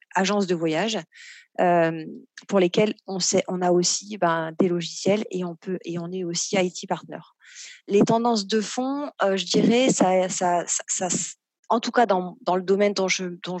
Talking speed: 195 wpm